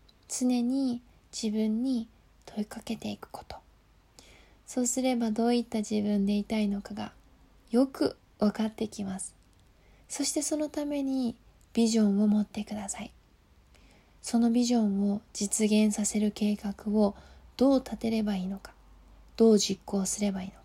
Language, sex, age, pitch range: Japanese, female, 20-39, 200-245 Hz